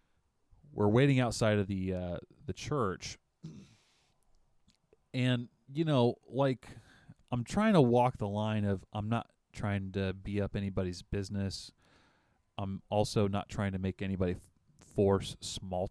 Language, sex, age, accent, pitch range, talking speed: English, male, 30-49, American, 95-115 Hz, 135 wpm